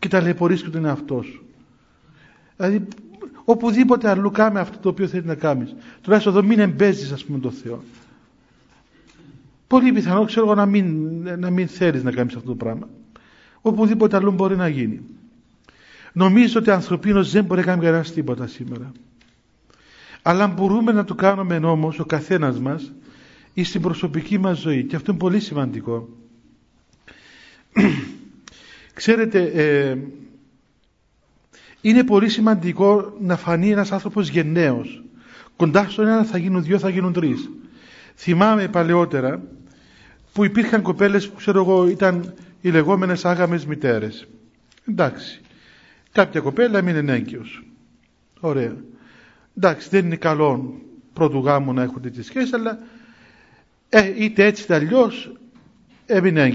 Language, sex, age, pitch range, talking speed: Greek, male, 50-69, 150-205 Hz, 135 wpm